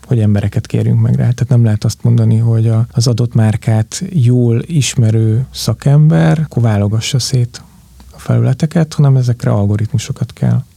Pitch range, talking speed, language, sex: 115-130 Hz, 140 wpm, Hungarian, male